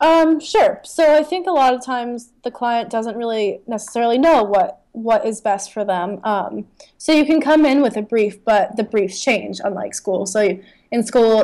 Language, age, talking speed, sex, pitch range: English, 20-39, 210 wpm, female, 200-235 Hz